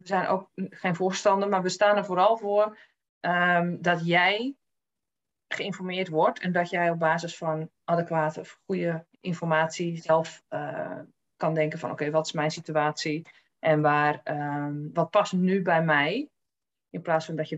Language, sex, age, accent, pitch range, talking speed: Dutch, female, 20-39, Dutch, 155-185 Hz, 170 wpm